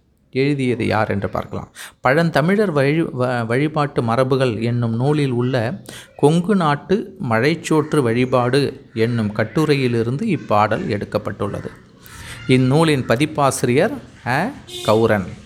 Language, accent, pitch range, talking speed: Tamil, native, 105-140 Hz, 85 wpm